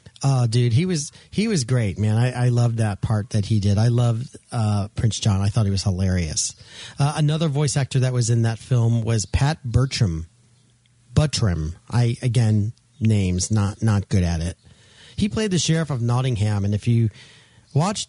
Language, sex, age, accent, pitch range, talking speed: English, male, 40-59, American, 110-135 Hz, 190 wpm